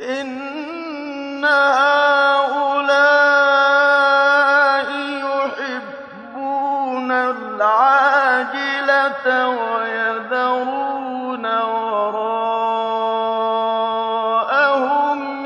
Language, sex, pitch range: Arabic, male, 255-285 Hz